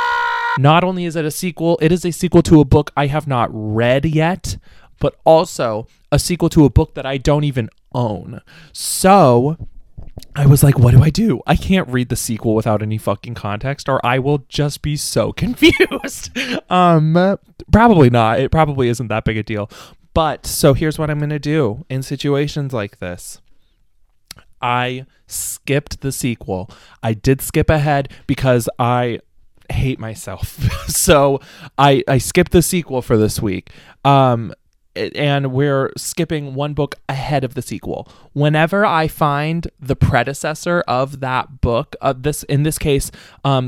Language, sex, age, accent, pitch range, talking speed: English, male, 20-39, American, 125-155 Hz, 170 wpm